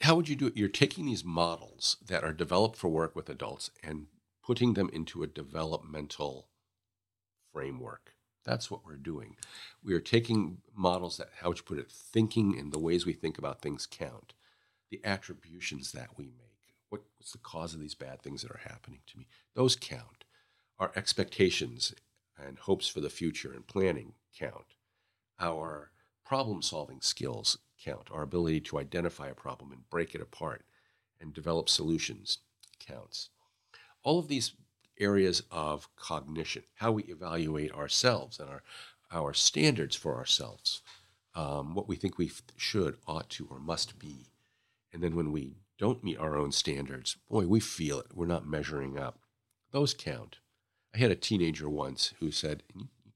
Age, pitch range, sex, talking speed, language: 50-69, 75-110 Hz, male, 165 wpm, English